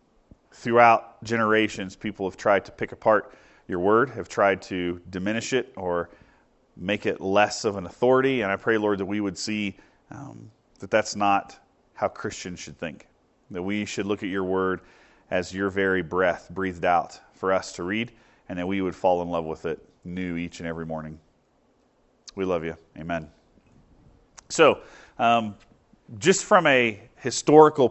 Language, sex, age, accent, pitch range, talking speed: English, male, 40-59, American, 95-125 Hz, 170 wpm